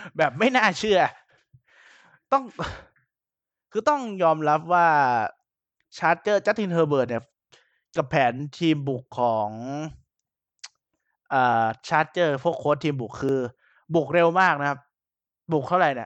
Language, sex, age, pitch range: Thai, male, 20-39, 135-175 Hz